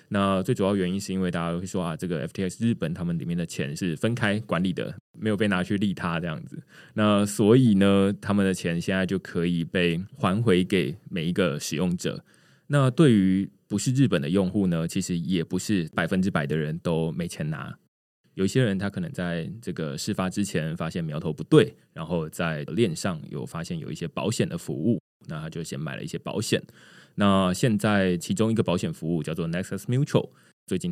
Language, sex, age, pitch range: Chinese, male, 20-39, 85-115 Hz